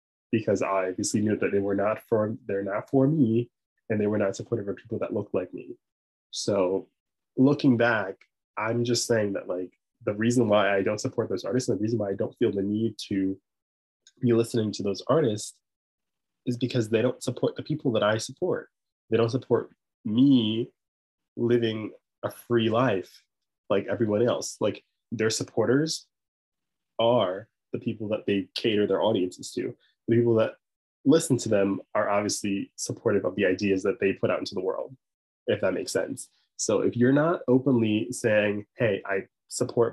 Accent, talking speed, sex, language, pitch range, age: American, 175 wpm, male, English, 100-120 Hz, 20-39